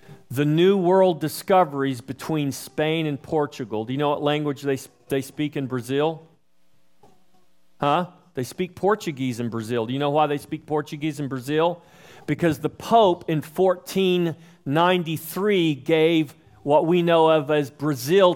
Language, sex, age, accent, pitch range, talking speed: English, male, 40-59, American, 115-165 Hz, 145 wpm